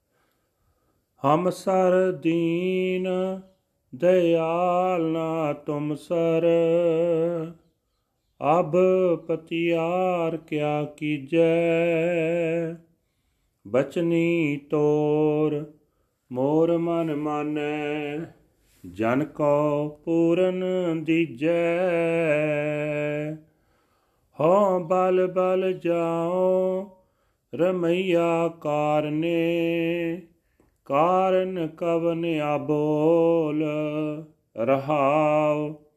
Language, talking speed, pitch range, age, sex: Punjabi, 50 wpm, 150-180 Hz, 40-59, male